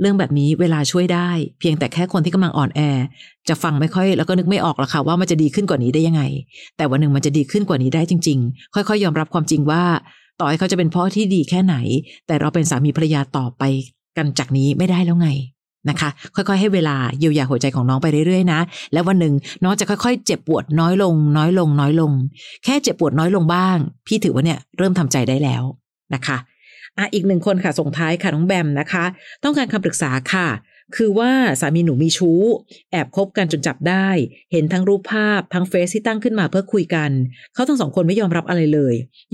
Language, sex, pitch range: Thai, female, 150-190 Hz